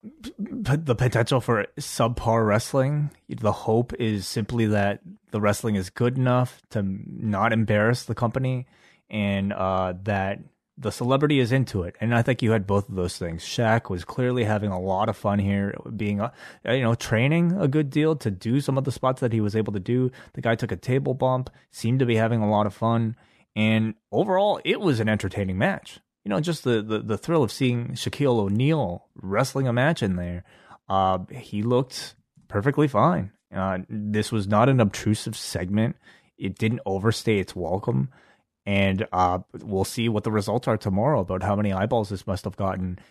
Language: English